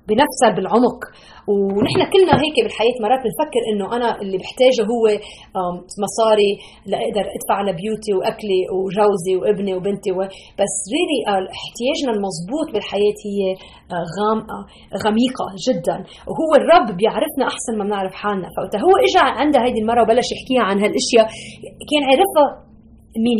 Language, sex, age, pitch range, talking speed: Arabic, female, 30-49, 200-280 Hz, 135 wpm